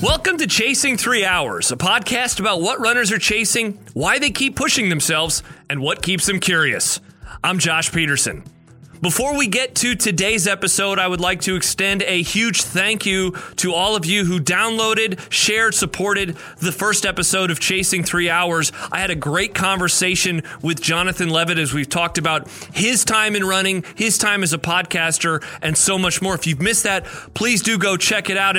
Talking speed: 190 wpm